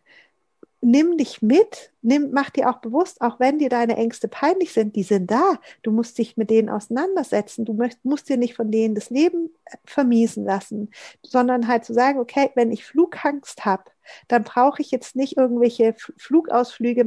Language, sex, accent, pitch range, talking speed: German, female, German, 225-260 Hz, 185 wpm